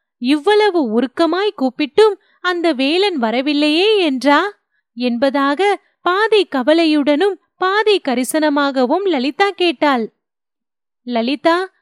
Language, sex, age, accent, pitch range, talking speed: Tamil, female, 30-49, native, 275-380 Hz, 75 wpm